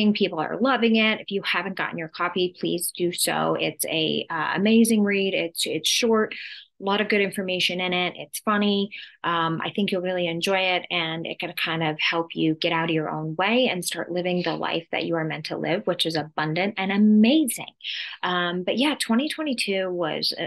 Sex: female